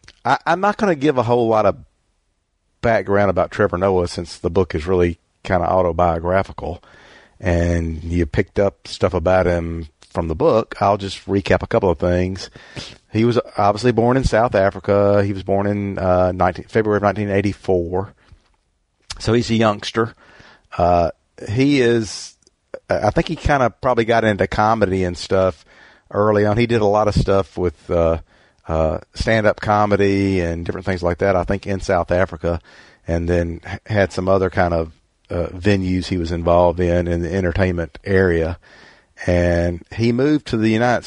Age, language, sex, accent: 50-69, English, male, American